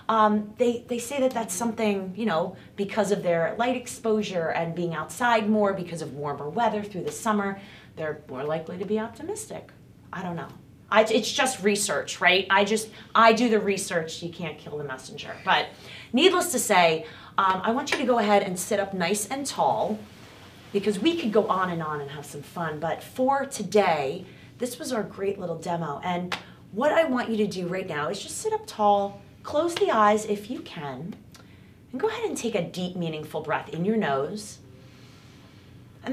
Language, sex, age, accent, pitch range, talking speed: English, female, 30-49, American, 170-230 Hz, 200 wpm